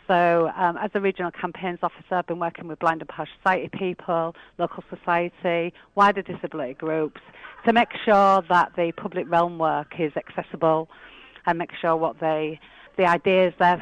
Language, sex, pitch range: English, female, 165-195 Hz